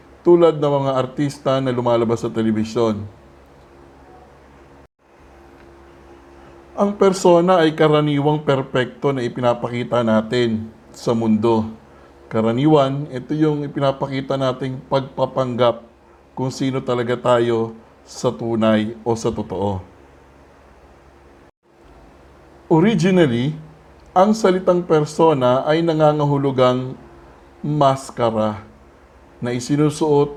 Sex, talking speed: male, 85 wpm